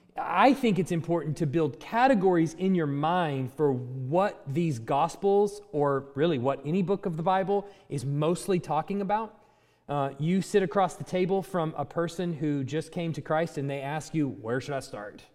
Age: 30-49